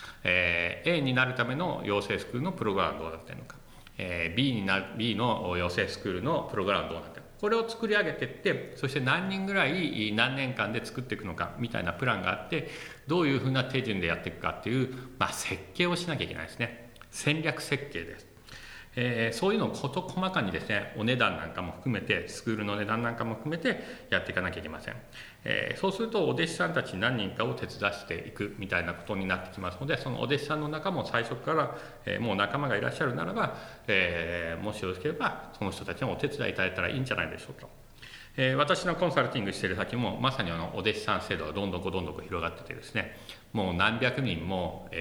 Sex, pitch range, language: male, 90-145 Hz, Japanese